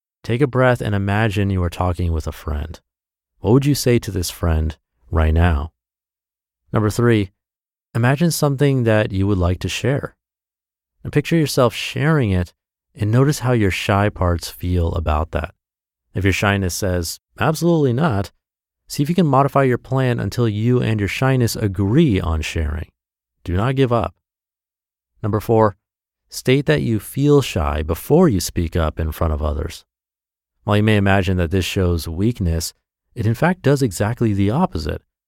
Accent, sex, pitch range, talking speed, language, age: American, male, 80-120 Hz, 170 wpm, English, 30-49